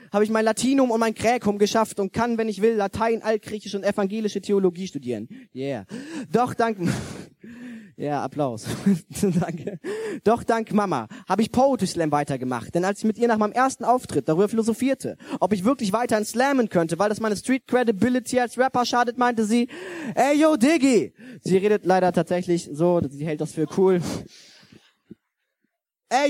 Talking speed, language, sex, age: 170 wpm, German, male, 20-39